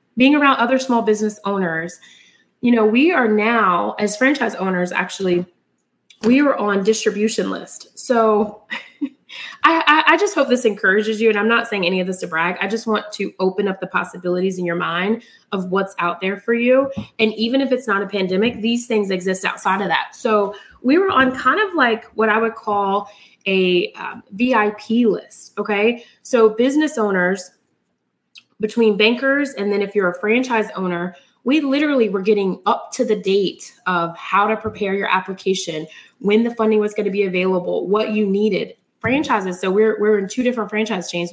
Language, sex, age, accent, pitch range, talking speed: English, female, 20-39, American, 185-230 Hz, 190 wpm